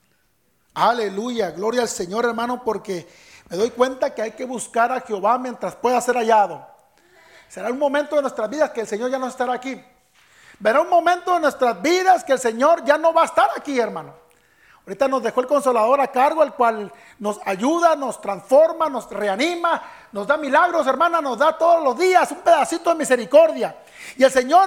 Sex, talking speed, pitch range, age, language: male, 190 wpm, 245-320 Hz, 40-59, English